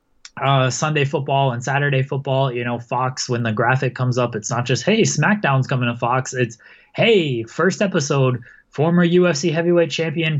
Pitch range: 125-155 Hz